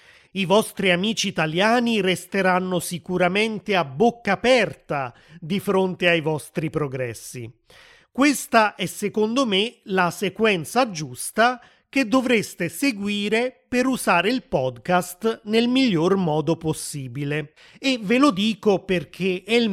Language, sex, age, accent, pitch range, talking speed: Italian, male, 30-49, native, 160-210 Hz, 120 wpm